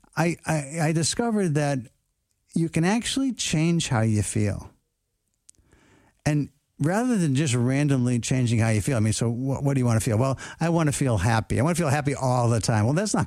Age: 60-79